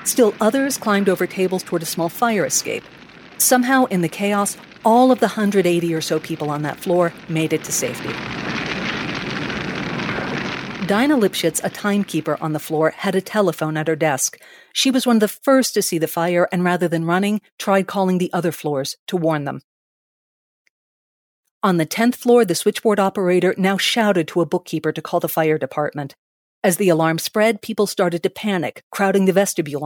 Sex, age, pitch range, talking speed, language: female, 50-69, 160-205 Hz, 185 wpm, English